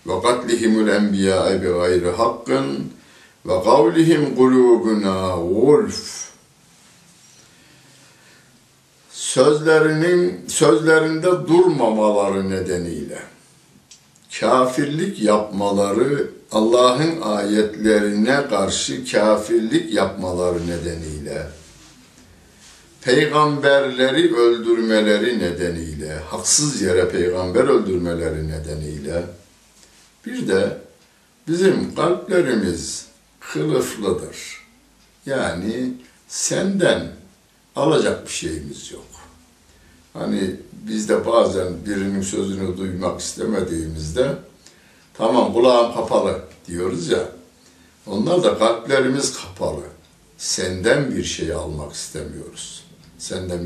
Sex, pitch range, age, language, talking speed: male, 85-125 Hz, 60-79, Turkish, 65 wpm